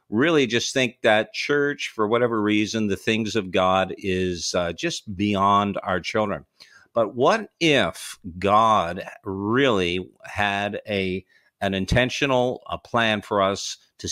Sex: male